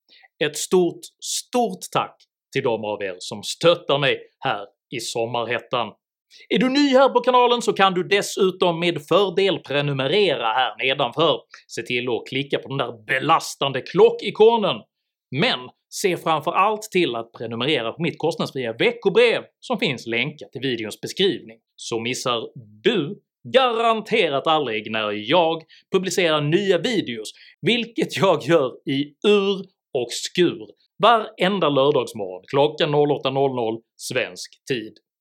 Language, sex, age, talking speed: Swedish, male, 30-49, 135 wpm